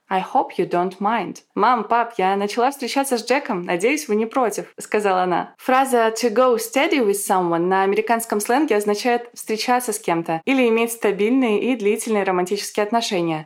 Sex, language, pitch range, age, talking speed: female, Russian, 210-255 Hz, 20-39, 175 wpm